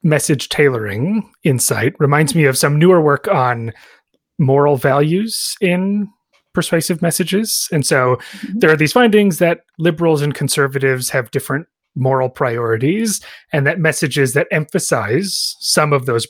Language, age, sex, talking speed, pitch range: English, 30-49, male, 135 wpm, 135-185 Hz